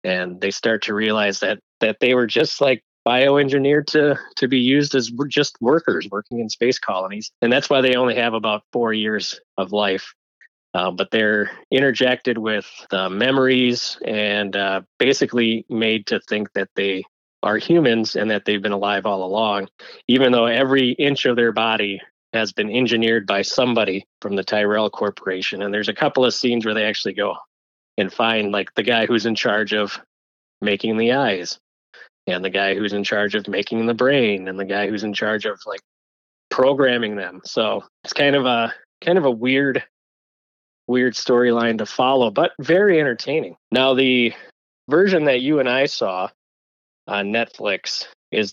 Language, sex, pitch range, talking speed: English, male, 100-125 Hz, 175 wpm